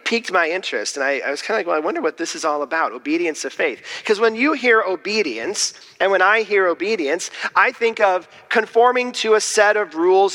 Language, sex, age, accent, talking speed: English, male, 40-59, American, 230 wpm